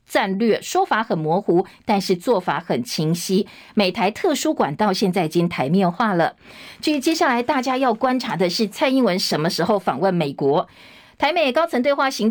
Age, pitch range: 50-69, 185-255 Hz